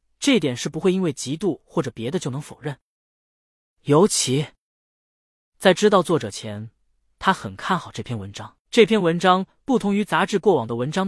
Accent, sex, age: native, male, 20-39